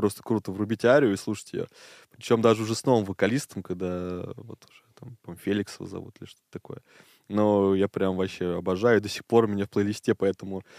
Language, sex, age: Russian, male, 20-39